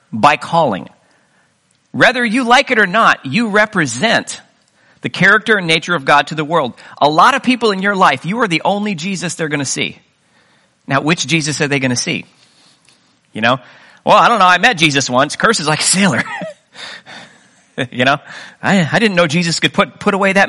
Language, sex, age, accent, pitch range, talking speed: English, male, 40-59, American, 140-205 Hz, 205 wpm